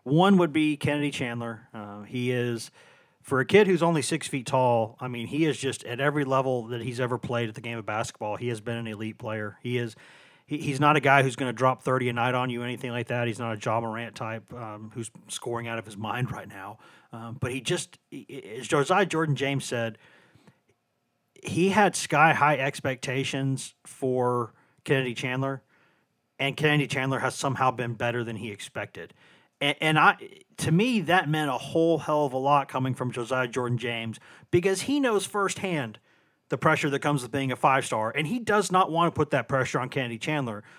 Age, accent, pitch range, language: 40-59, American, 120-155 Hz, English